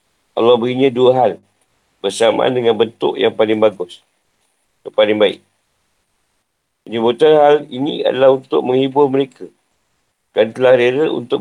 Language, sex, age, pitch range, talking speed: Malay, male, 50-69, 115-155 Hz, 120 wpm